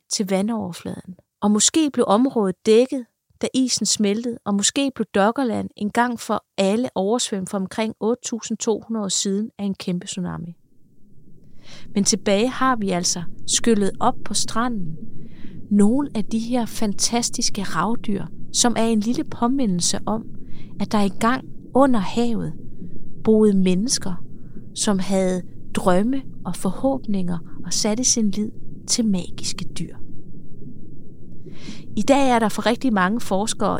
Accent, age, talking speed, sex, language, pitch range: native, 30-49, 135 wpm, female, Danish, 190-240 Hz